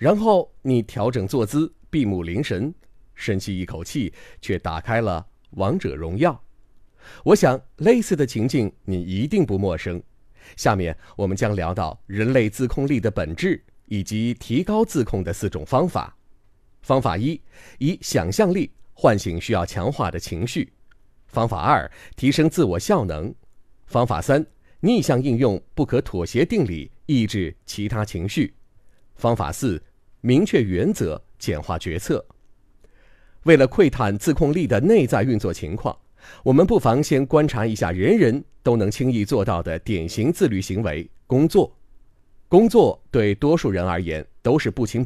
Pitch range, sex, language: 95-130 Hz, male, Chinese